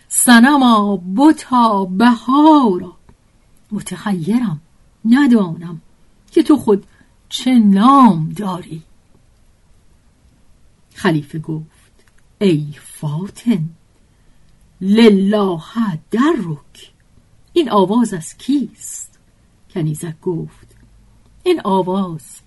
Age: 50-69